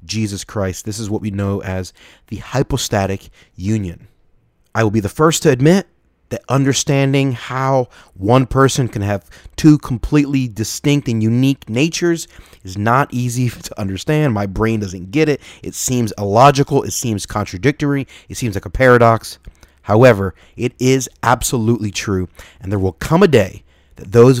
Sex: male